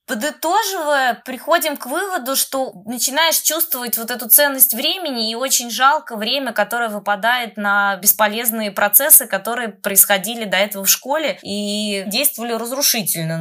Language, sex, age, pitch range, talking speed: Russian, female, 20-39, 200-260 Hz, 130 wpm